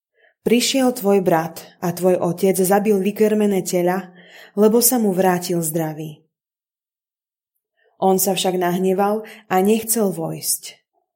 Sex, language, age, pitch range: female, Slovak, 20-39, 175-210 Hz